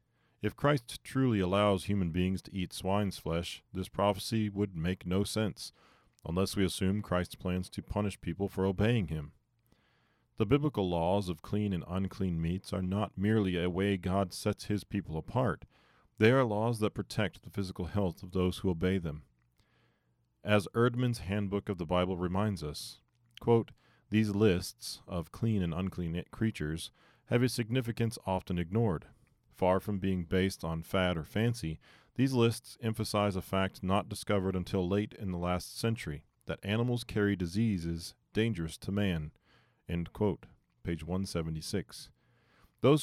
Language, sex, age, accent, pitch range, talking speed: English, male, 40-59, American, 90-110 Hz, 155 wpm